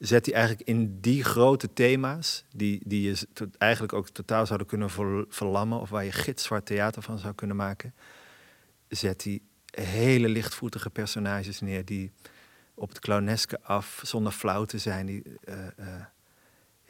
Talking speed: 155 wpm